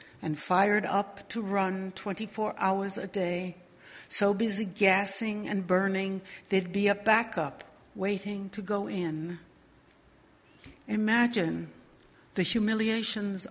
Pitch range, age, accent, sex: 180-210 Hz, 60-79, American, female